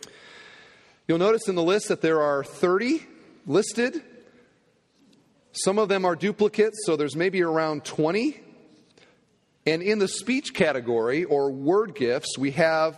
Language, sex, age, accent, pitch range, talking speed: English, male, 40-59, American, 145-205 Hz, 140 wpm